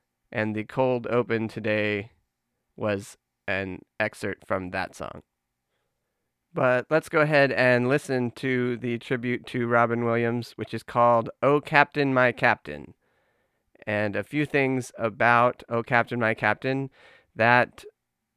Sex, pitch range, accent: male, 110-130 Hz, American